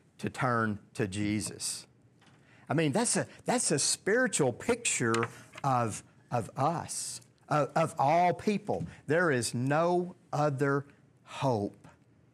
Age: 50-69